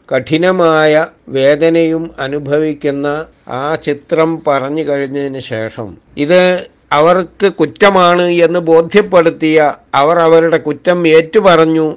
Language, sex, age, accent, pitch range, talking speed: Malayalam, male, 50-69, native, 130-165 Hz, 85 wpm